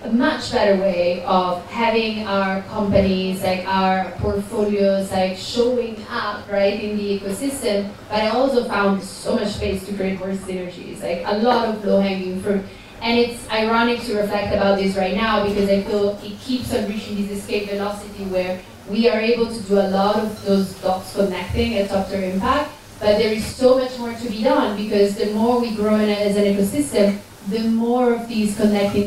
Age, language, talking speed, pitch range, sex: 30-49, English, 190 wpm, 195-225 Hz, female